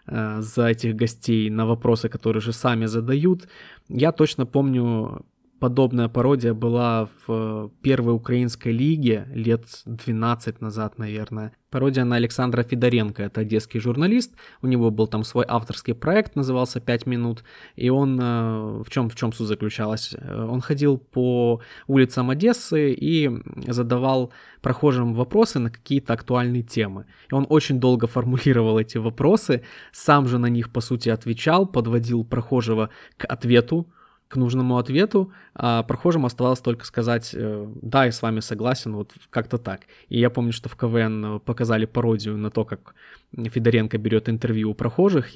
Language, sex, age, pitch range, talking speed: Russian, male, 20-39, 115-130 Hz, 145 wpm